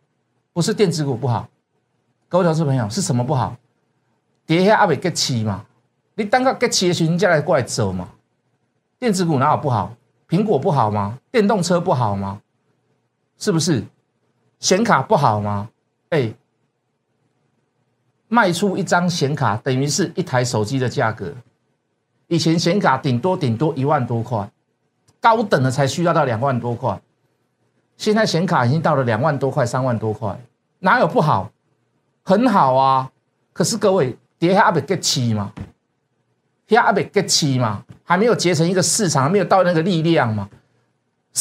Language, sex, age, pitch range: Chinese, male, 50-69, 125-195 Hz